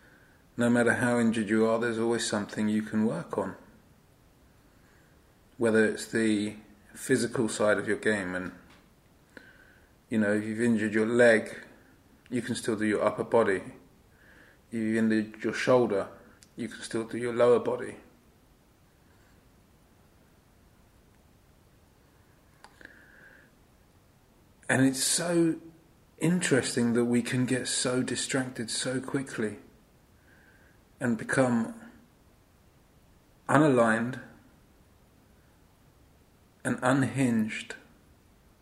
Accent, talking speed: British, 100 wpm